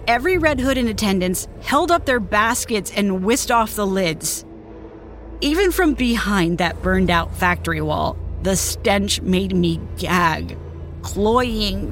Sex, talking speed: female, 135 wpm